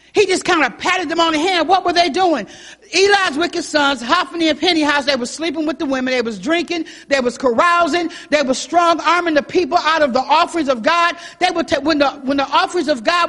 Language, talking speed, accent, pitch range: English, 240 wpm, American, 305-380 Hz